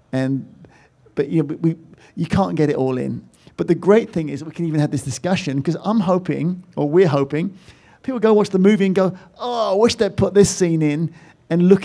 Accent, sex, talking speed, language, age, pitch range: British, male, 235 wpm, English, 50-69, 150-200 Hz